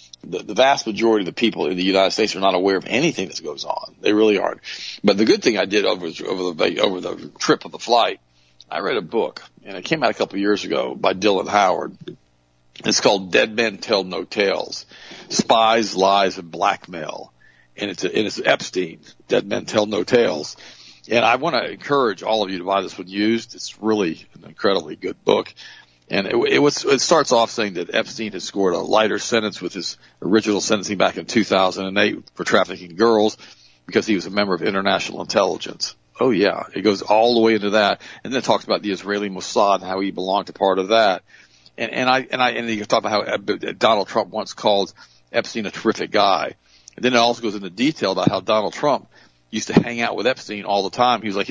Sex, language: male, English